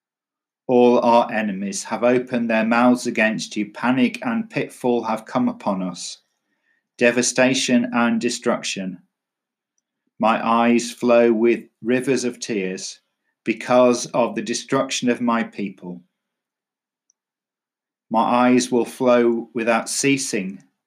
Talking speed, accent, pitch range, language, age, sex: 110 wpm, British, 110-125 Hz, English, 50-69, male